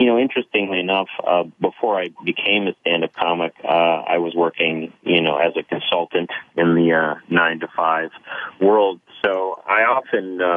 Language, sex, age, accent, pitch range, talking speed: English, male, 40-59, American, 80-90 Hz, 160 wpm